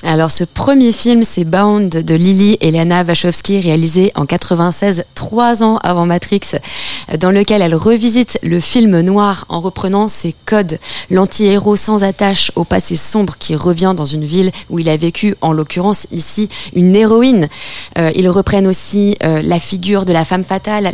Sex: female